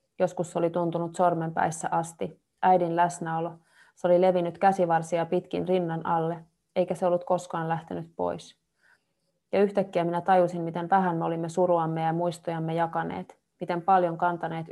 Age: 30-49